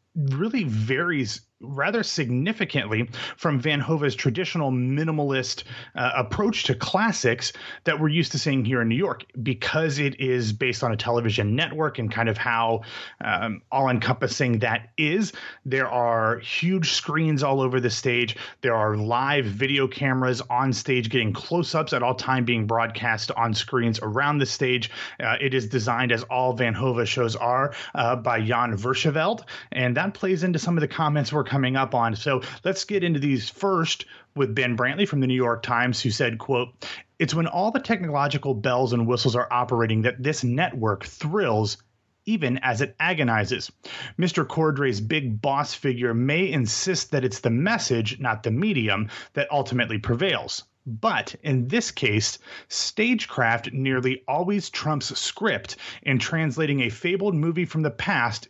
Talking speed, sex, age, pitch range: 165 wpm, male, 30-49, 120-155 Hz